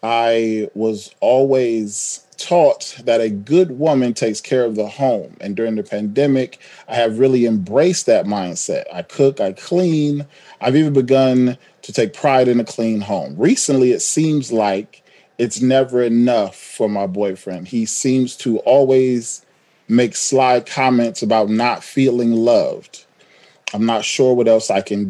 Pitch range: 110-135 Hz